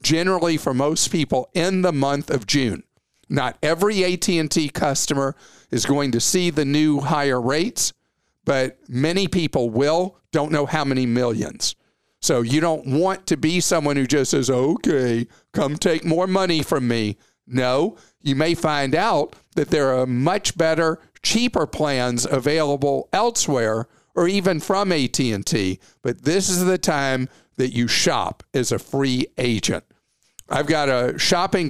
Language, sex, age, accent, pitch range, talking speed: English, male, 50-69, American, 130-170 Hz, 155 wpm